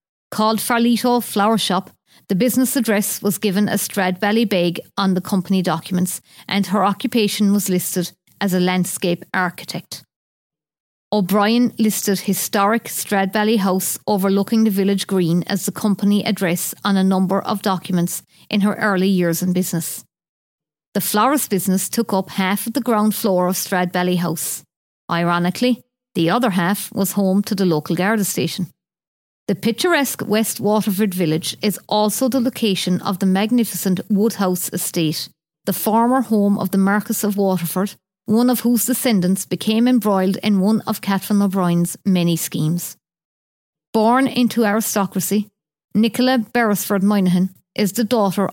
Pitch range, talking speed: 185-220 Hz, 145 wpm